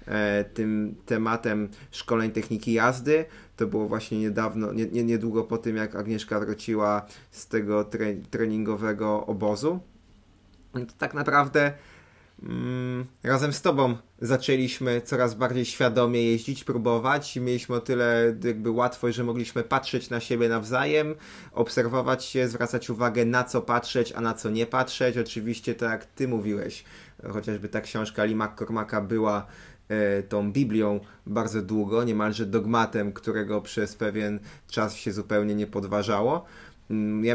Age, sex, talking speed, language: 20-39, male, 130 wpm, Polish